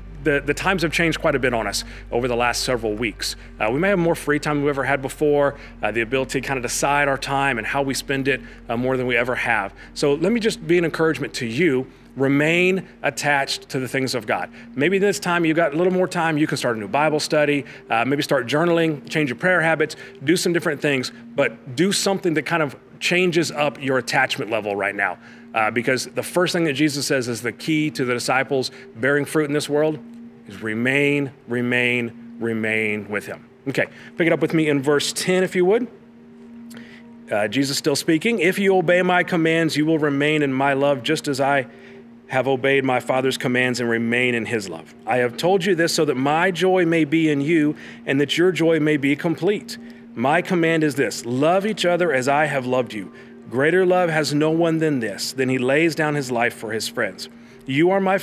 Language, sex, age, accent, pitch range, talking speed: English, male, 40-59, American, 125-165 Hz, 225 wpm